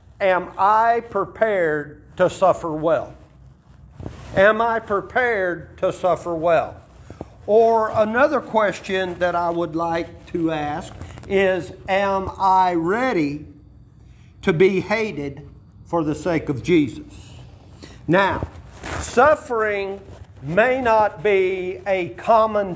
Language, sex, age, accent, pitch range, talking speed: English, male, 50-69, American, 175-225 Hz, 105 wpm